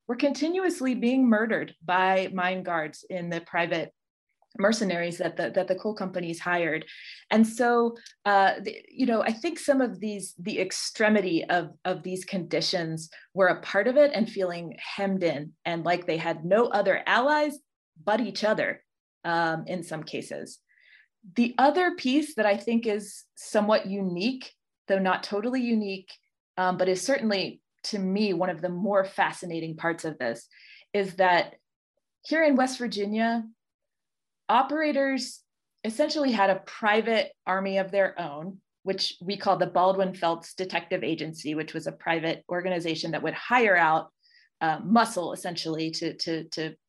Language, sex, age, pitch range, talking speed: English, female, 20-39, 170-230 Hz, 155 wpm